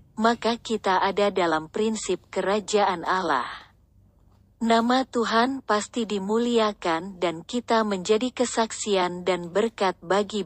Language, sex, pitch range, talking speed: Indonesian, female, 175-230 Hz, 105 wpm